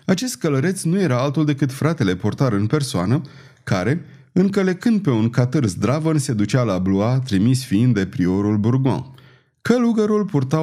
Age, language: 30-49, Romanian